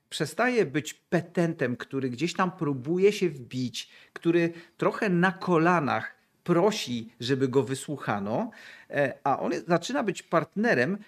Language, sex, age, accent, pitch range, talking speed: Polish, male, 40-59, native, 135-195 Hz, 120 wpm